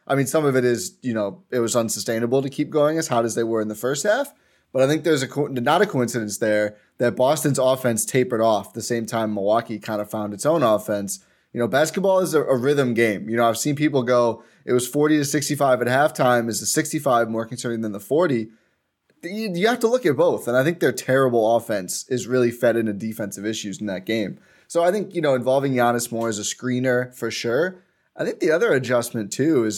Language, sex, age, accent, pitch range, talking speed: English, male, 20-39, American, 110-140 Hz, 240 wpm